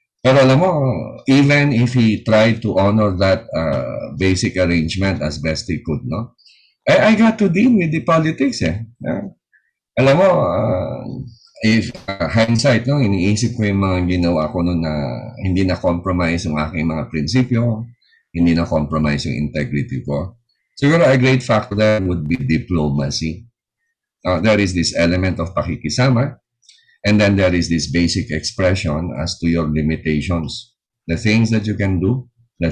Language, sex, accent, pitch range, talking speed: Filipino, male, native, 90-125 Hz, 160 wpm